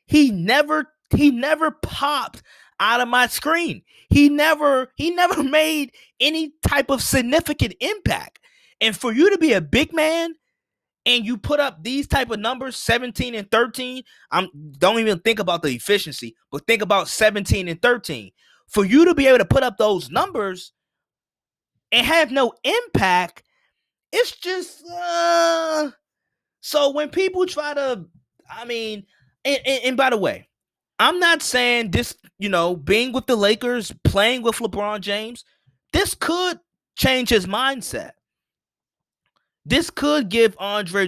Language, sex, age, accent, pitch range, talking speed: English, male, 20-39, American, 205-300 Hz, 150 wpm